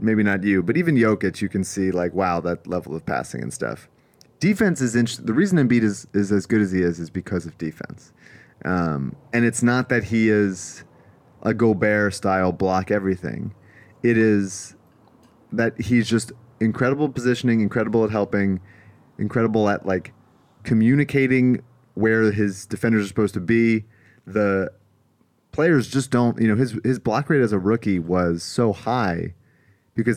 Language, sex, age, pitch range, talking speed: English, male, 30-49, 95-115 Hz, 165 wpm